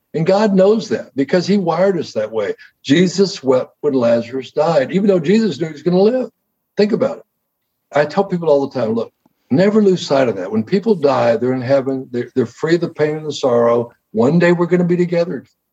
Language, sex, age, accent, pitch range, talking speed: English, male, 60-79, American, 145-200 Hz, 230 wpm